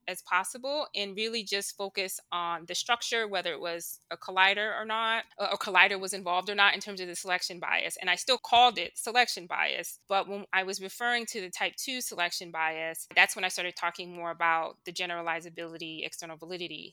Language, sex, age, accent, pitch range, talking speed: English, female, 20-39, American, 170-205 Hz, 205 wpm